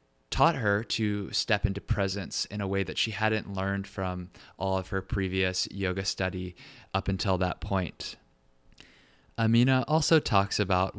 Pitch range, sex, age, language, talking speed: 95-110 Hz, male, 20-39, English, 155 wpm